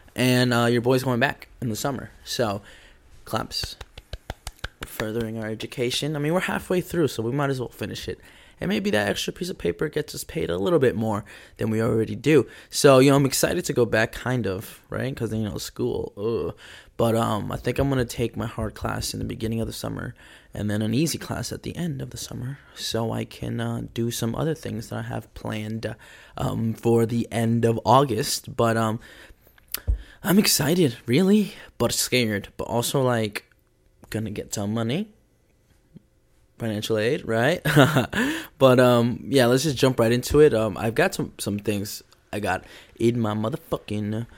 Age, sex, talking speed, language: 20-39, male, 190 wpm, English